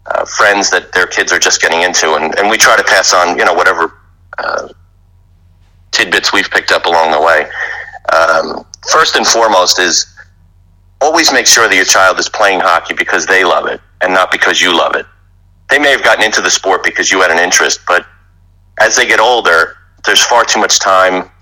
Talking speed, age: 205 wpm, 40-59